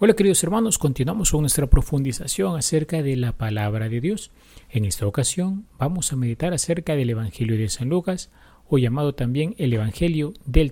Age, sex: 40-59, male